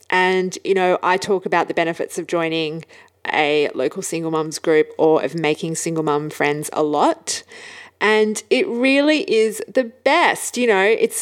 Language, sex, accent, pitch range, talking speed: English, female, Australian, 165-230 Hz, 170 wpm